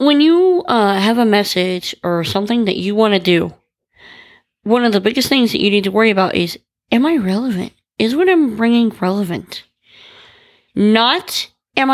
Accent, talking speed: American, 175 wpm